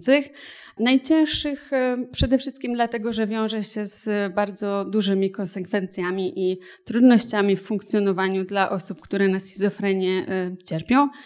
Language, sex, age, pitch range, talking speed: Polish, female, 30-49, 185-225 Hz, 110 wpm